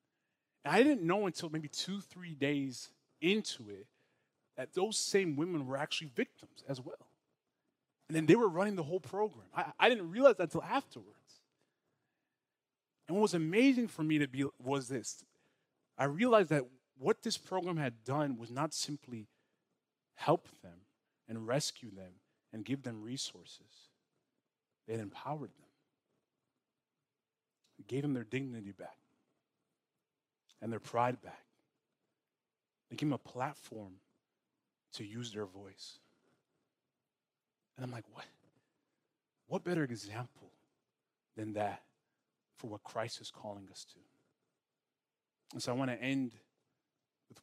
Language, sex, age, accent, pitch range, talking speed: English, male, 30-49, American, 115-155 Hz, 140 wpm